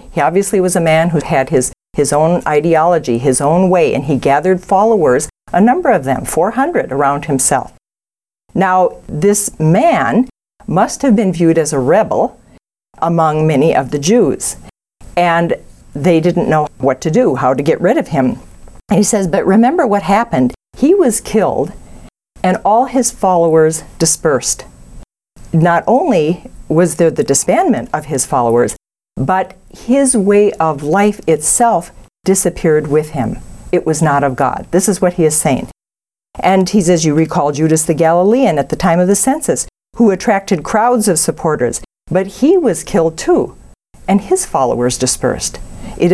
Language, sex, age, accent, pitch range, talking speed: English, female, 50-69, American, 155-205 Hz, 165 wpm